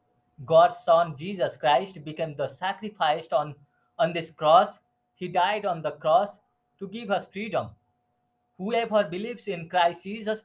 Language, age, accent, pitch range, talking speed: English, 20-39, Indian, 130-205 Hz, 140 wpm